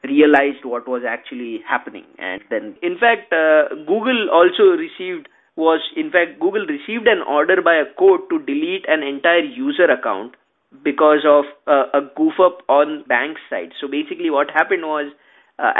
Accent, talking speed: Indian, 165 wpm